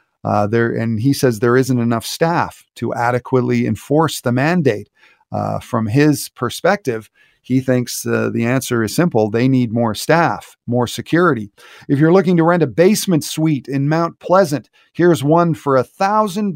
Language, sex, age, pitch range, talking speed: English, male, 50-69, 125-165 Hz, 170 wpm